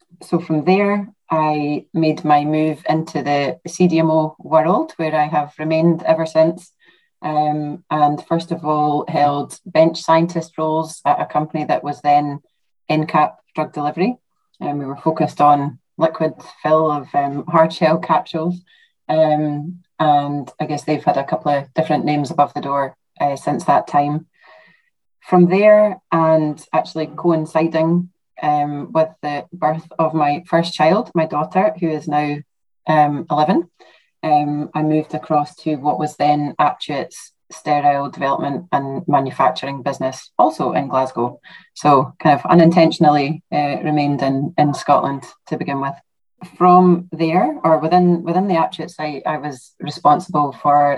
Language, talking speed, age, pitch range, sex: English, 150 wpm, 30-49, 145-165 Hz, female